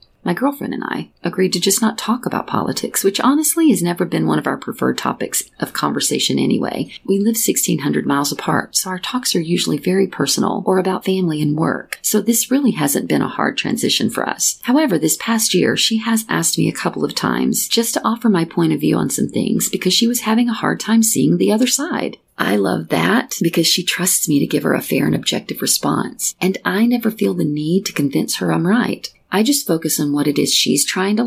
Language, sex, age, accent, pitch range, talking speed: English, female, 40-59, American, 170-235 Hz, 230 wpm